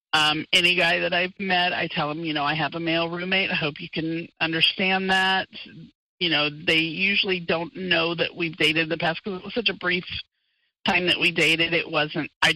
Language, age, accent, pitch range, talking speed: English, 40-59, American, 165-200 Hz, 220 wpm